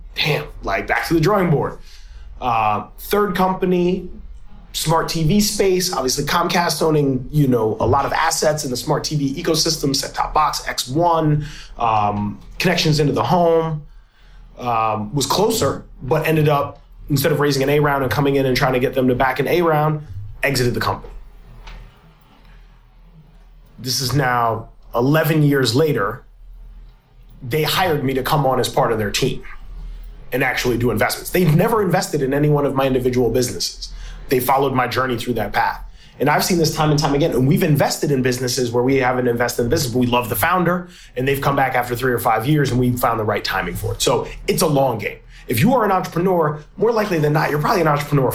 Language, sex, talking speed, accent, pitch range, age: English, male, 200 wpm, American, 125-160 Hz, 30-49